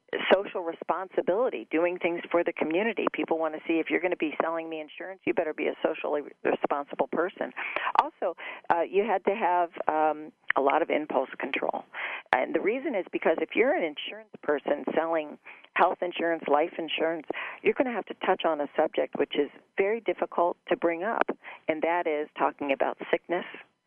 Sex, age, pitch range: female, 40-59, 150-185 Hz